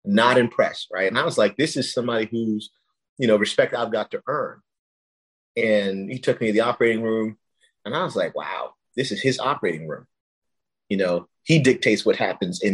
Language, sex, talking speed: English, male, 205 wpm